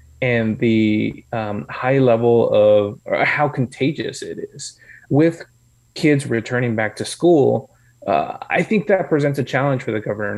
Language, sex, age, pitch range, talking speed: English, male, 20-39, 115-135 Hz, 150 wpm